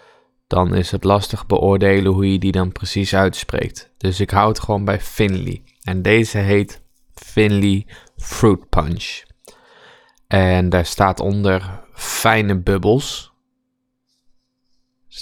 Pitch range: 95-130 Hz